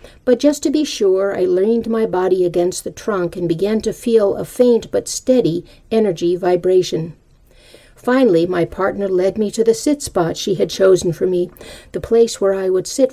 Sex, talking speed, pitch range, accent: female, 185 wpm, 175-225 Hz, American